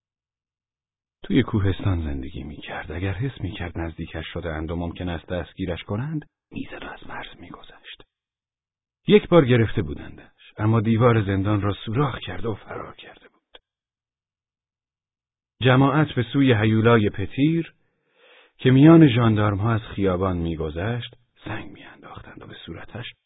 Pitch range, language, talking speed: 85-125 Hz, Persian, 125 wpm